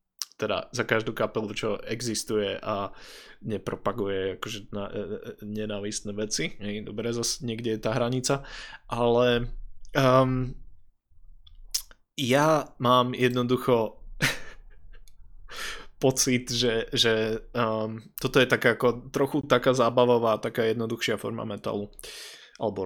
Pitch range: 110-130 Hz